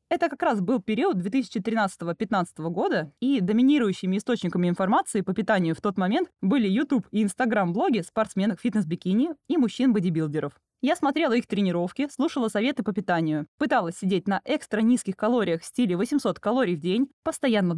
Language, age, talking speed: Russian, 20-39, 150 wpm